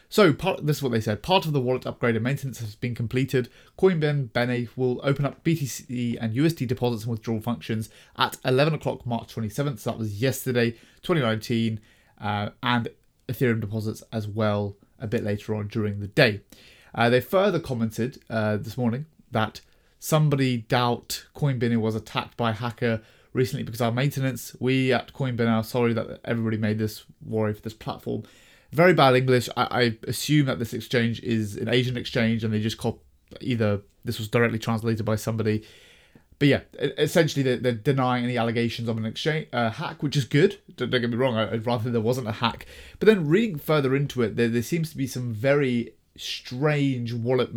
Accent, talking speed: British, 190 wpm